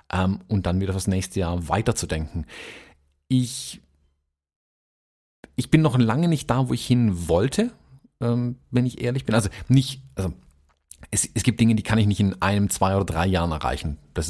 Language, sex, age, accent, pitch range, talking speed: German, male, 40-59, German, 95-120 Hz, 170 wpm